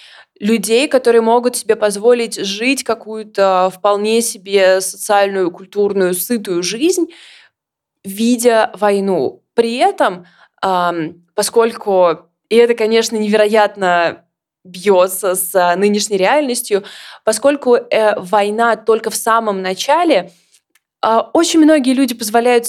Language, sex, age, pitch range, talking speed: Russian, female, 20-39, 205-275 Hz, 95 wpm